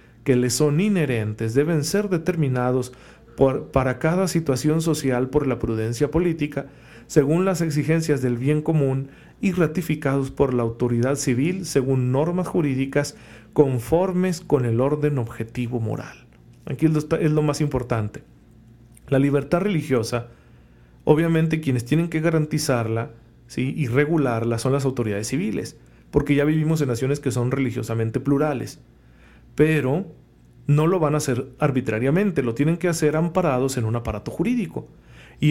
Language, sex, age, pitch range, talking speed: Spanish, male, 40-59, 125-150 Hz, 145 wpm